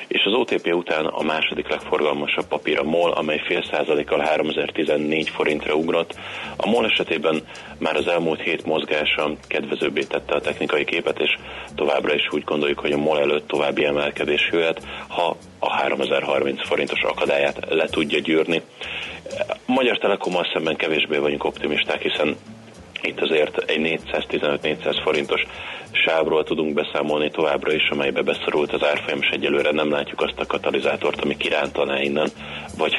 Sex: male